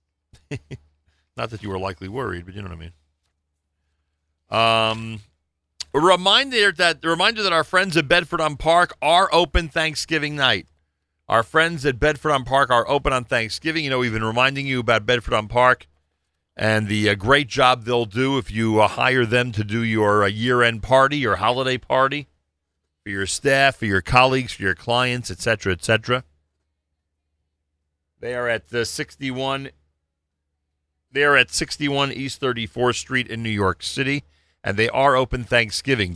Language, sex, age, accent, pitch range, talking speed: English, male, 40-59, American, 85-140 Hz, 170 wpm